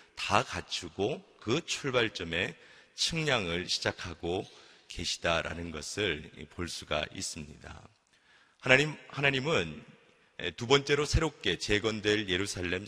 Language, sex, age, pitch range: Korean, male, 40-59, 85-115 Hz